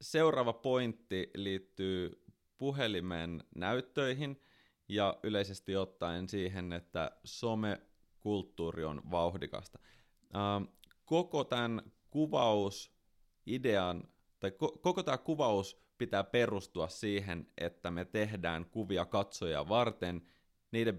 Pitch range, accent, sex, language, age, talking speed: 85-110 Hz, native, male, Finnish, 30-49, 85 wpm